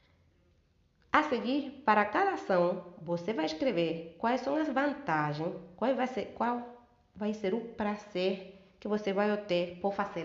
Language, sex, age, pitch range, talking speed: Portuguese, female, 30-49, 175-225 Hz, 150 wpm